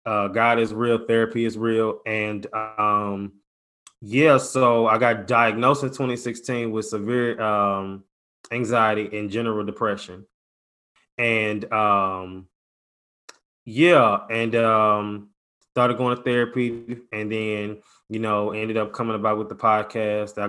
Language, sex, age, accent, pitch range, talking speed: English, male, 20-39, American, 105-125 Hz, 125 wpm